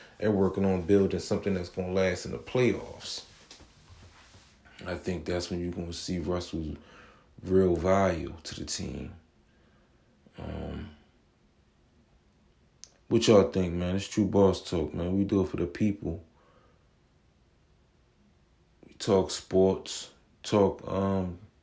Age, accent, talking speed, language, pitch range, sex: 20-39, American, 130 wpm, English, 85-100 Hz, male